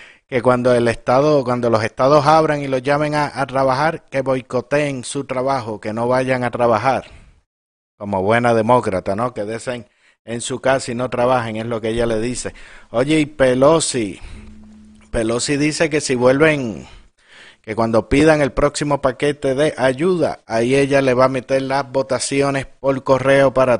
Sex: male